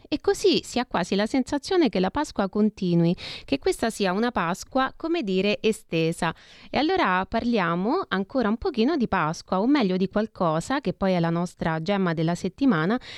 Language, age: Italian, 20-39